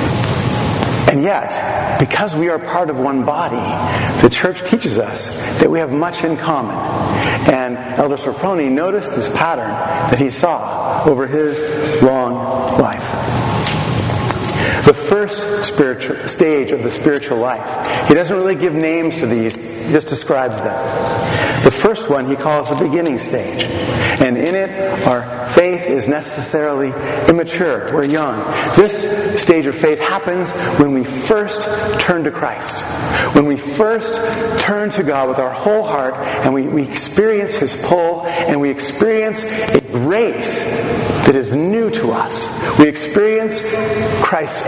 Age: 40-59